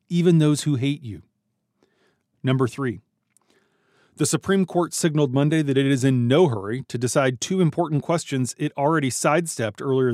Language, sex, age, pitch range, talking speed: English, male, 30-49, 120-150 Hz, 160 wpm